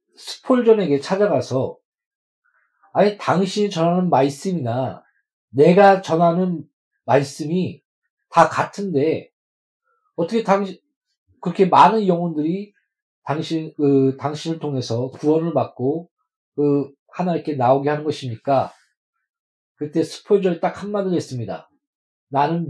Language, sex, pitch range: Korean, male, 130-180 Hz